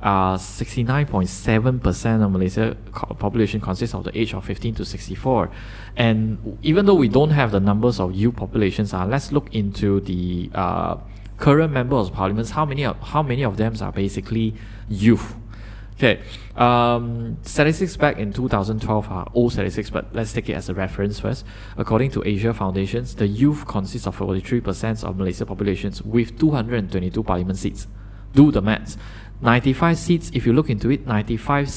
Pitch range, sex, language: 100-120 Hz, male, Chinese